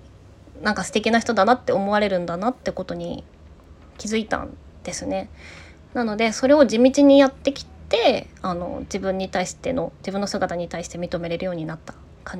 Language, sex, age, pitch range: Japanese, female, 20-39, 185-270 Hz